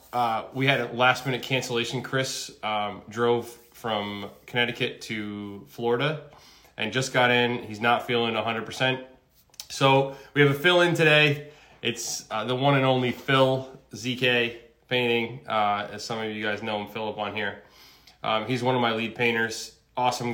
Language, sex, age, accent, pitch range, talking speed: English, male, 20-39, American, 110-130 Hz, 170 wpm